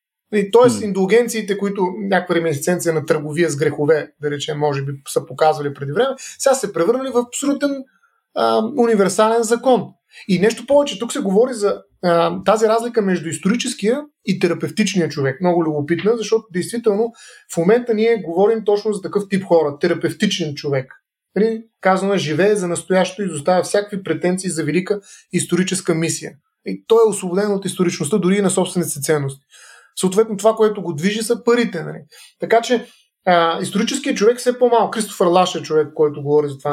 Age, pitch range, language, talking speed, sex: 30-49, 170-225 Hz, Bulgarian, 165 wpm, male